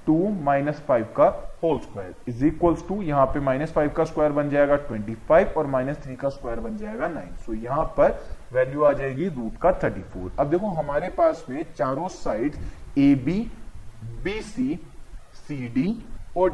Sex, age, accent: male, 20-39, native